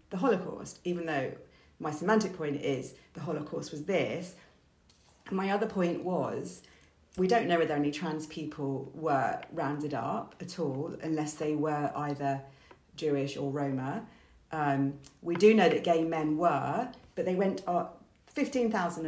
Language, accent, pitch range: English, British, 145-180 Hz